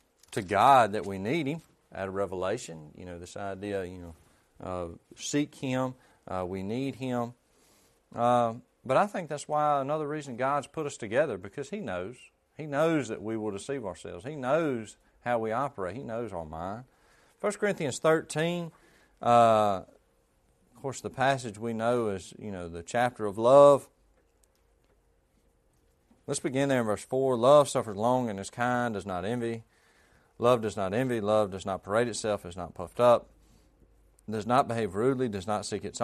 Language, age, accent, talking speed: English, 40-59, American, 175 wpm